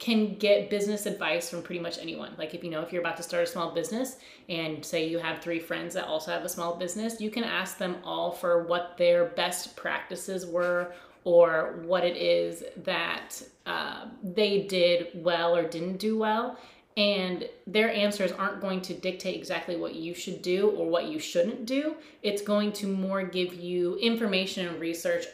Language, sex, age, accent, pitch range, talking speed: English, female, 30-49, American, 175-205 Hz, 195 wpm